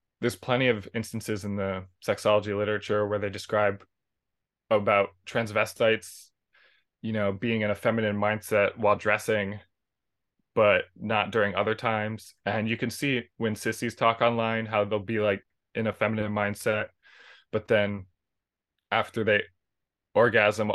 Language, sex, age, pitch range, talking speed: English, male, 20-39, 100-115 Hz, 140 wpm